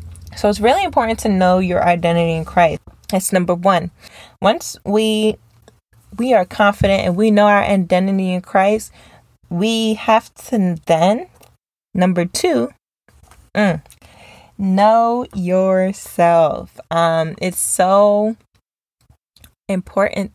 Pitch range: 170-210 Hz